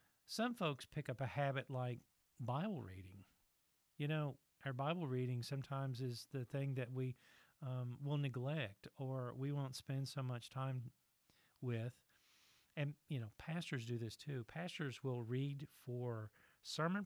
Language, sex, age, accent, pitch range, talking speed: English, male, 40-59, American, 120-140 Hz, 150 wpm